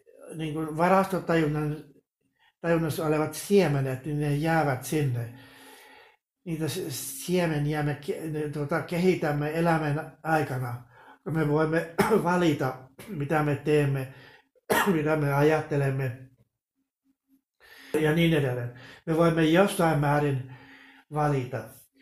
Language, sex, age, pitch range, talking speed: Finnish, male, 60-79, 145-170 Hz, 80 wpm